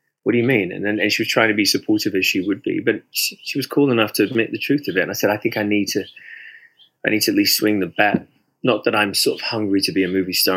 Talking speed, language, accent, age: 310 wpm, English, British, 20-39